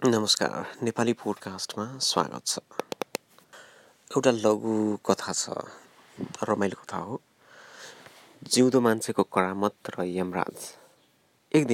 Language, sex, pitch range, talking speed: English, male, 95-115 Hz, 90 wpm